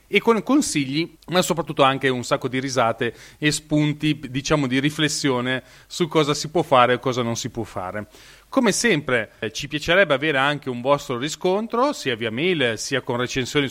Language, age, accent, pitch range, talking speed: Italian, 30-49, native, 130-165 Hz, 185 wpm